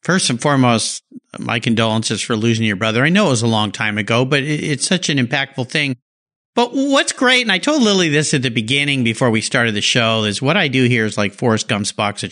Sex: male